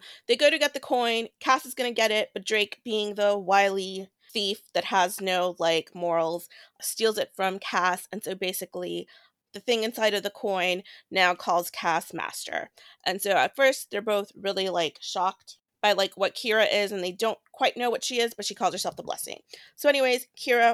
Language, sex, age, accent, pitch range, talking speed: English, female, 30-49, American, 185-230 Hz, 205 wpm